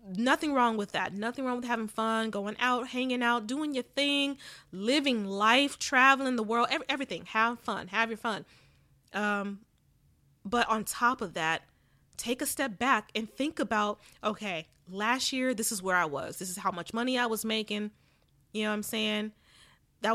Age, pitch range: 20-39, 205-260 Hz